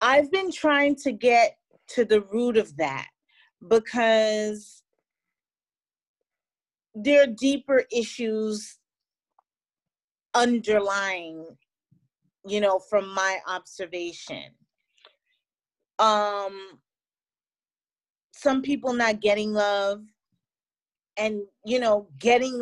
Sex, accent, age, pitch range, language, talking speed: female, American, 30-49, 210-270 Hz, English, 80 wpm